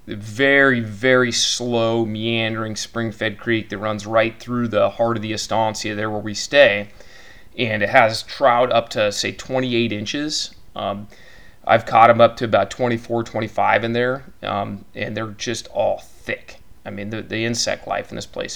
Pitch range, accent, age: 110-125 Hz, American, 30-49